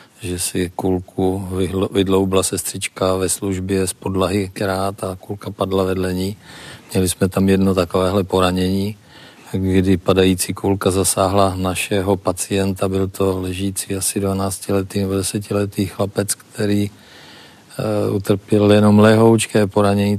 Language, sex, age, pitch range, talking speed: Czech, male, 40-59, 95-105 Hz, 115 wpm